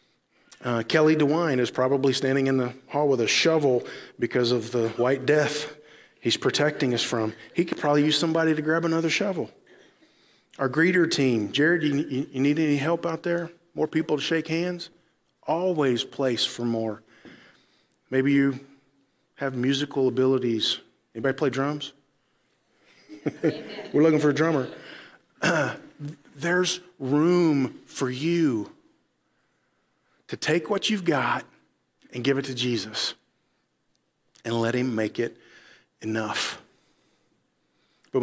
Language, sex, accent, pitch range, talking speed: English, male, American, 125-160 Hz, 135 wpm